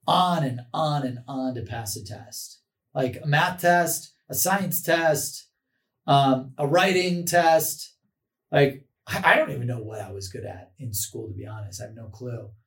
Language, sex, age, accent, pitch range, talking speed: English, male, 30-49, American, 125-160 Hz, 185 wpm